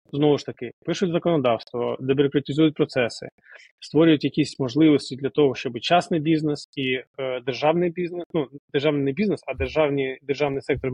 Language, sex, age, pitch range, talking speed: Ukrainian, male, 20-39, 135-155 Hz, 145 wpm